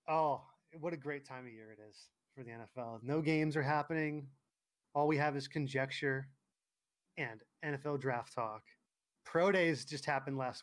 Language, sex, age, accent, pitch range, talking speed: English, male, 20-39, American, 125-160 Hz, 170 wpm